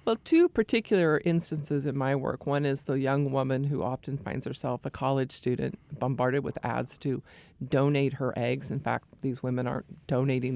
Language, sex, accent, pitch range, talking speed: English, female, American, 135-155 Hz, 180 wpm